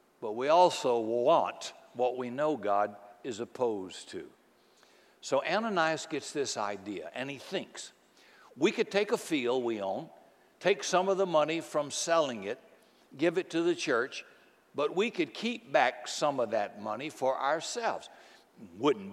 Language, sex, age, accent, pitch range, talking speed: English, male, 60-79, American, 130-180 Hz, 160 wpm